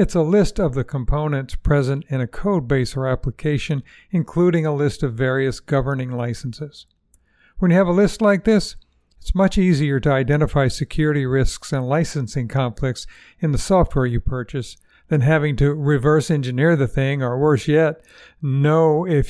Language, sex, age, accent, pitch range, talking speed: English, male, 60-79, American, 135-175 Hz, 170 wpm